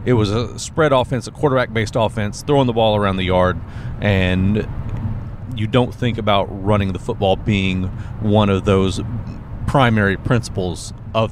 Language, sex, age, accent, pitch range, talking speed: English, male, 40-59, American, 100-115 Hz, 155 wpm